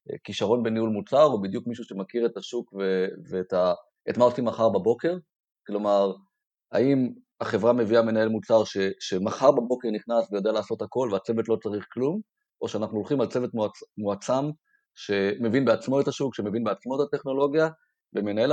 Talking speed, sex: 155 wpm, male